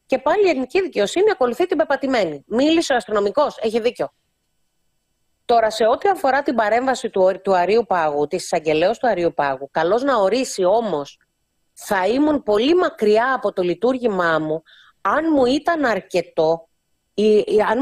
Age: 30-49